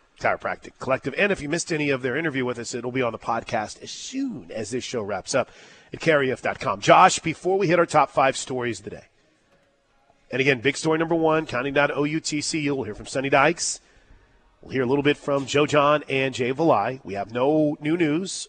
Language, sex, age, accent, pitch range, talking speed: English, male, 30-49, American, 130-155 Hz, 210 wpm